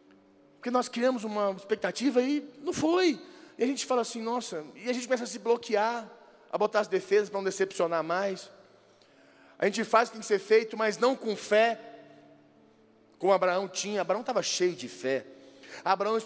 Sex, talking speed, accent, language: male, 190 wpm, Brazilian, Portuguese